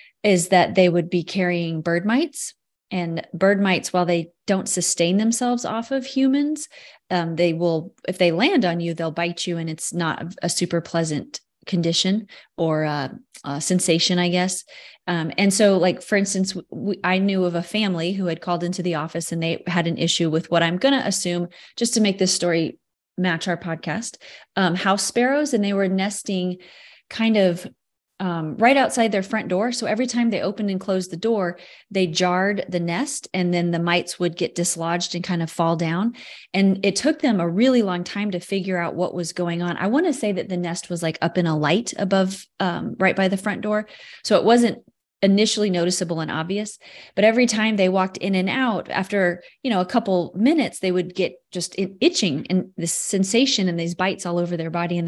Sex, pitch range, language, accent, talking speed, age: female, 170-205 Hz, English, American, 210 wpm, 30-49